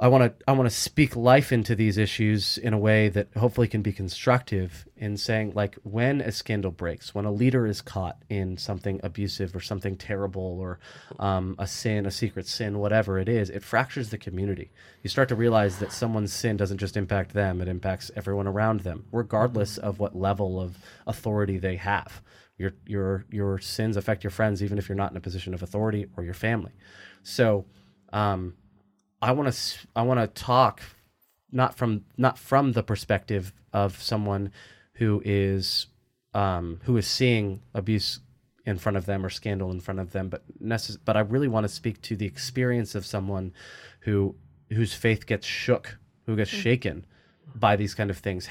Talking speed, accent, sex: 190 wpm, American, male